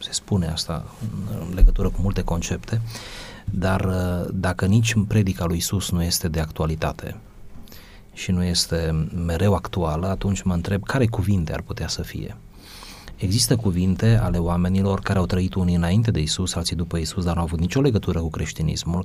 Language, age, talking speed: Romanian, 30-49, 170 wpm